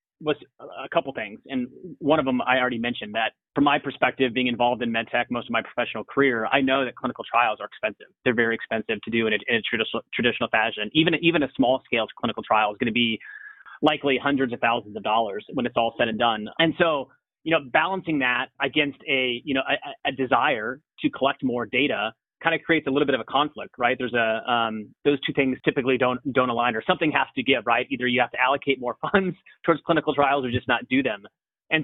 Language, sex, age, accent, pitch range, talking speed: English, male, 30-49, American, 120-145 Hz, 235 wpm